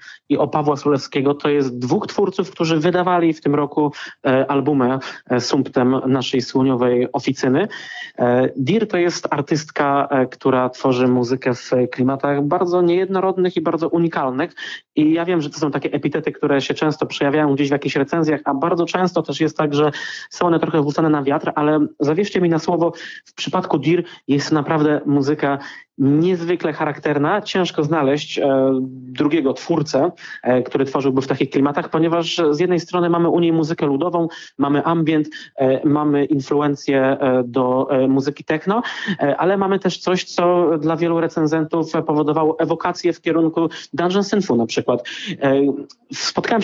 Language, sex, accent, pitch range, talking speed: Polish, male, native, 135-165 Hz, 160 wpm